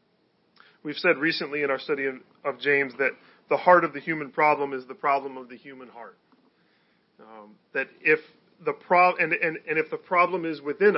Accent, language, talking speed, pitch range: American, English, 190 wpm, 135-175 Hz